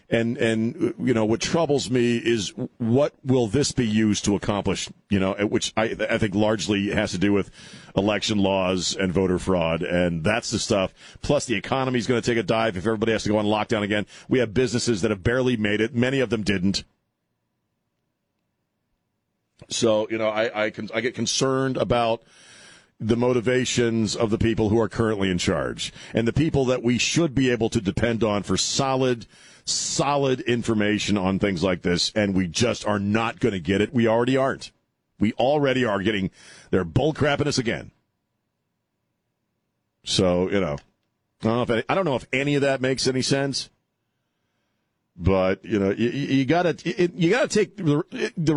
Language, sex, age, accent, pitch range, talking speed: English, male, 40-59, American, 105-130 Hz, 185 wpm